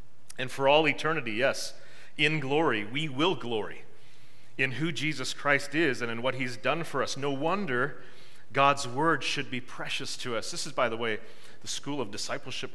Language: English